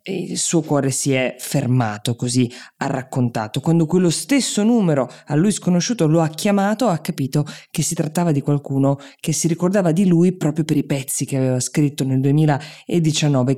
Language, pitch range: Italian, 130-165 Hz